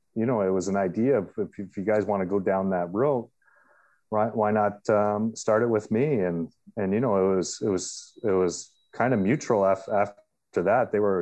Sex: male